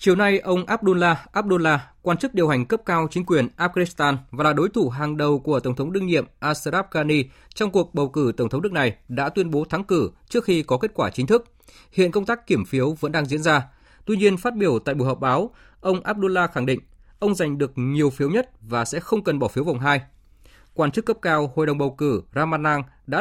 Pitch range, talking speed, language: 135-185 Hz, 240 wpm, Vietnamese